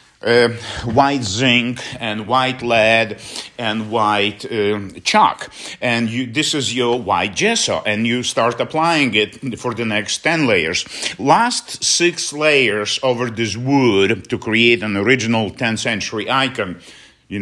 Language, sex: English, male